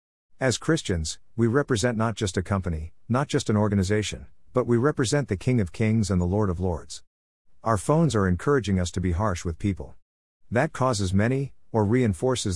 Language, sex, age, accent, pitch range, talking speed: English, male, 50-69, American, 90-120 Hz, 185 wpm